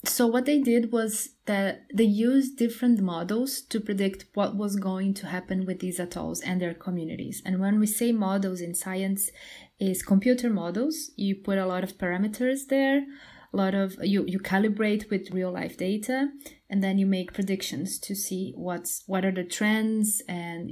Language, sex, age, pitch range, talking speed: English, female, 20-39, 180-215 Hz, 180 wpm